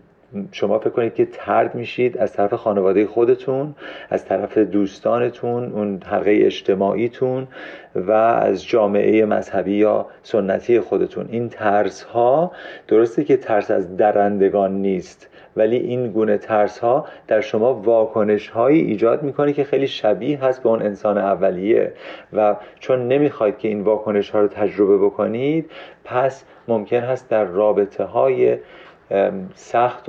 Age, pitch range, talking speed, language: 40-59, 100-120 Hz, 135 wpm, Persian